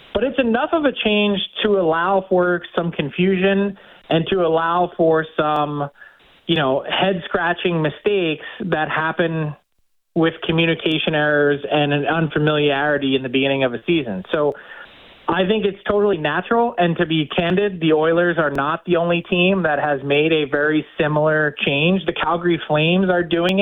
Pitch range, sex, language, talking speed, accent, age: 155-190 Hz, male, English, 160 wpm, American, 20-39